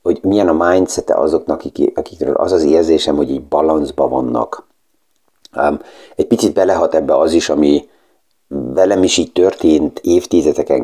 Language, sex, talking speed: Hungarian, male, 145 wpm